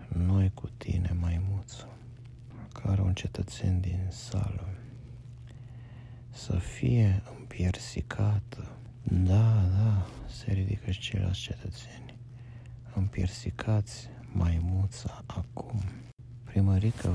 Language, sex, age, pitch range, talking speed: Romanian, male, 50-69, 100-120 Hz, 80 wpm